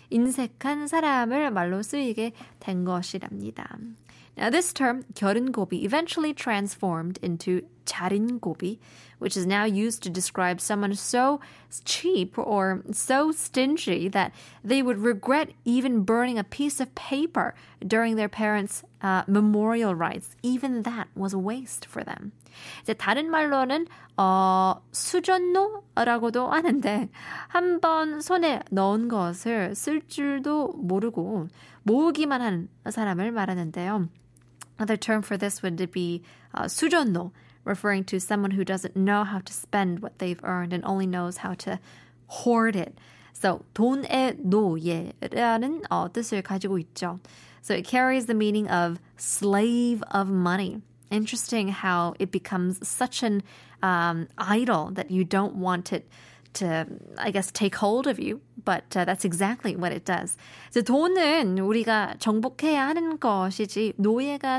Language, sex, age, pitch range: Korean, female, 20-39, 190-250 Hz